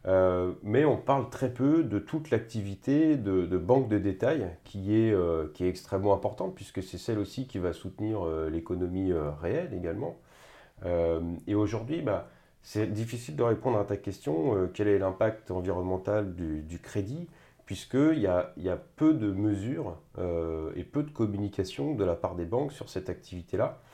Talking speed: 180 wpm